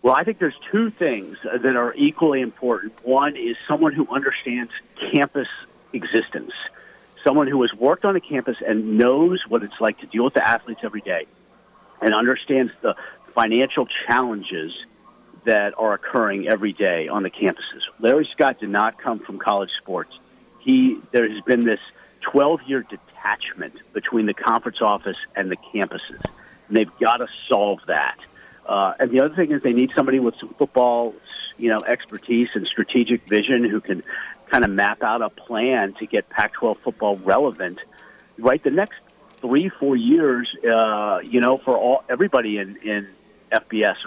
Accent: American